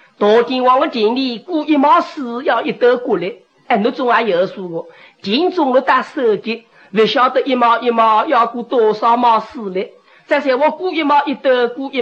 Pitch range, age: 230-345 Hz, 40-59